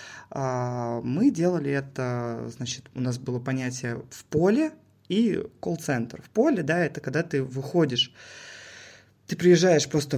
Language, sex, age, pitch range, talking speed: Russian, male, 20-39, 125-160 Hz, 130 wpm